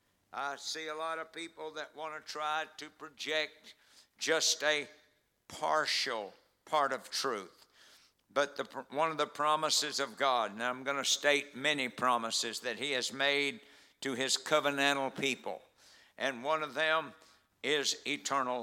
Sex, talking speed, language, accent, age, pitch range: male, 150 wpm, English, American, 60-79, 130-150 Hz